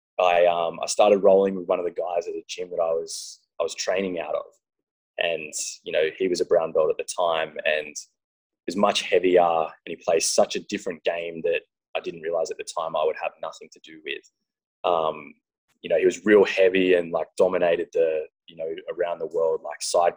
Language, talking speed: English, 225 wpm